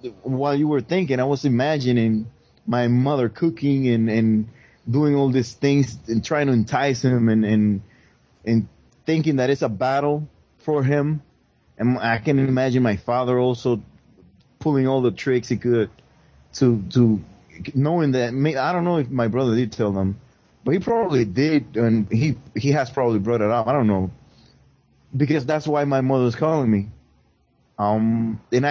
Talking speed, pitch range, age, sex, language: 170 wpm, 115-140 Hz, 30-49, male, English